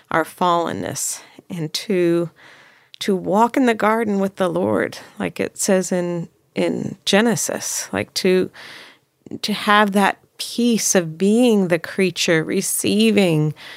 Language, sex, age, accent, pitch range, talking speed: English, female, 40-59, American, 175-230 Hz, 125 wpm